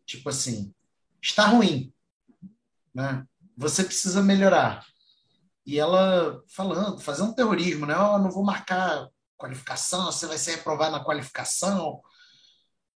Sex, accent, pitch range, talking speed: male, Brazilian, 130-185 Hz, 125 wpm